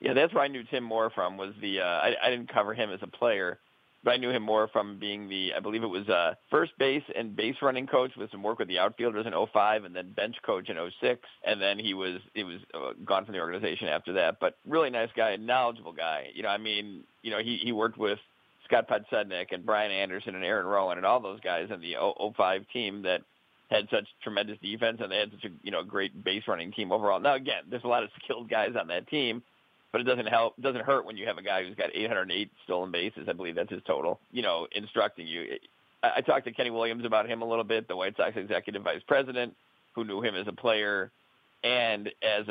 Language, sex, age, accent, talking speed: English, male, 40-59, American, 250 wpm